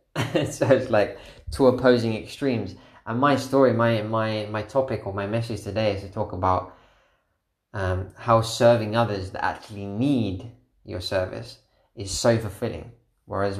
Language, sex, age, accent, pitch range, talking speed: English, male, 20-39, British, 100-120 Hz, 150 wpm